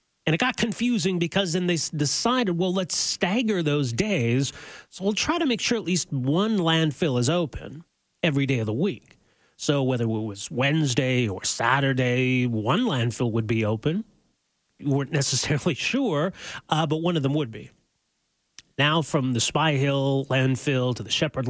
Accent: American